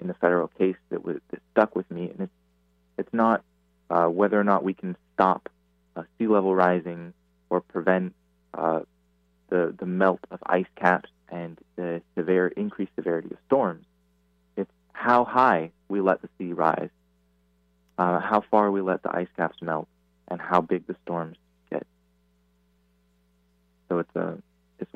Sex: male